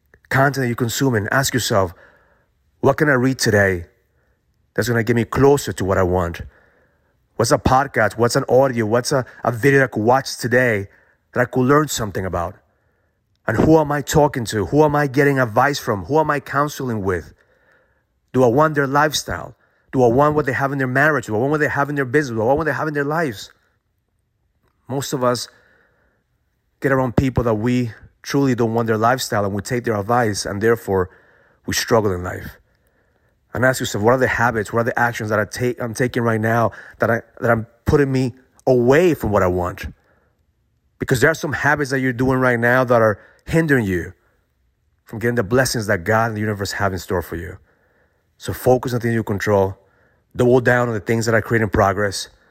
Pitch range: 105-130 Hz